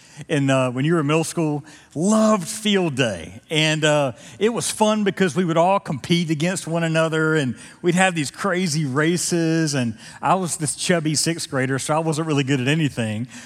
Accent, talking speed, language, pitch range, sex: American, 195 wpm, English, 135-180 Hz, male